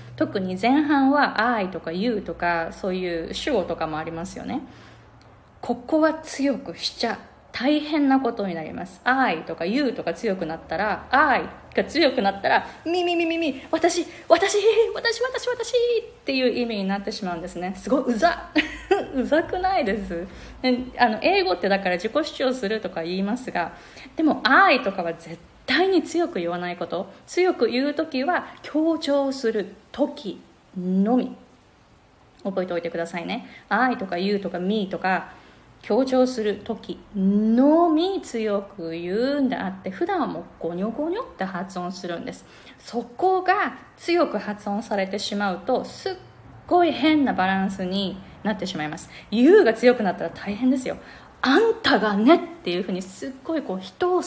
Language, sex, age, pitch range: Japanese, female, 20-39, 190-315 Hz